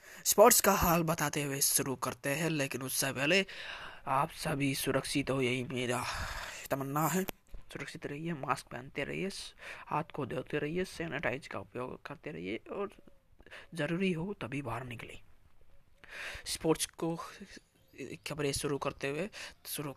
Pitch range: 135-165 Hz